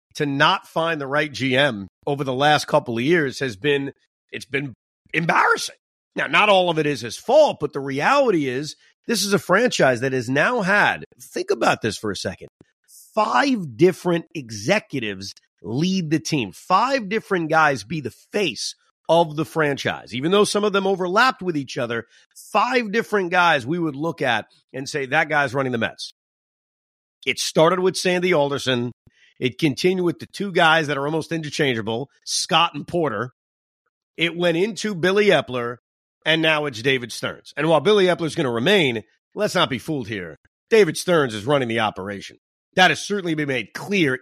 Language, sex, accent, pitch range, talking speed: English, male, American, 130-185 Hz, 180 wpm